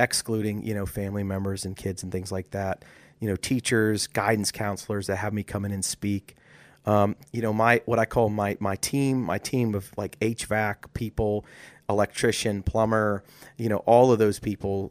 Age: 30-49